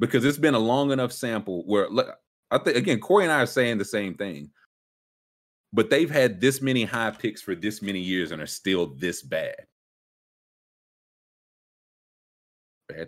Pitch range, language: 80-130 Hz, English